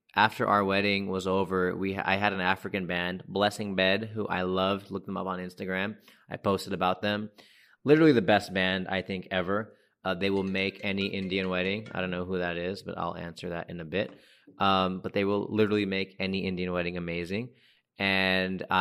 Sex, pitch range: male, 95-105 Hz